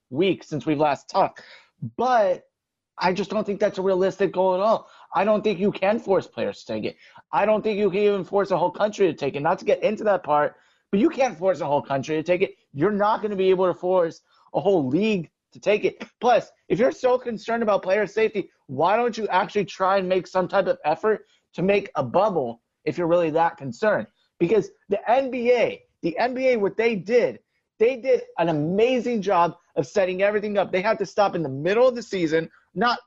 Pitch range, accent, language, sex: 165-215 Hz, American, English, male